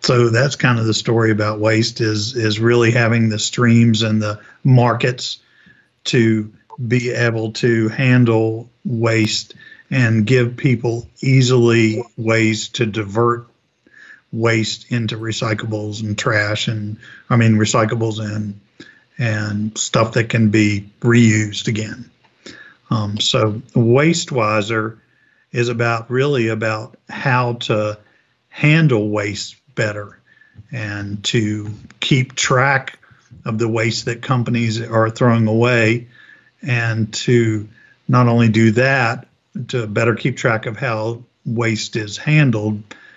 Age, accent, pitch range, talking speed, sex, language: 50-69, American, 110-125 Hz, 120 wpm, male, English